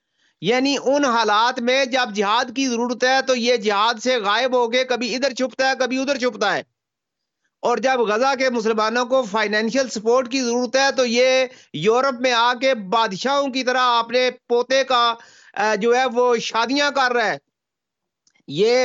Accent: Indian